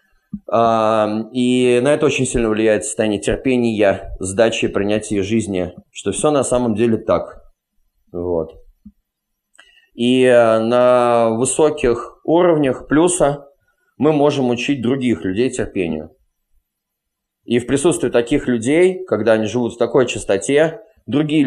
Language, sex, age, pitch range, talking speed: Russian, male, 20-39, 105-130 Hz, 115 wpm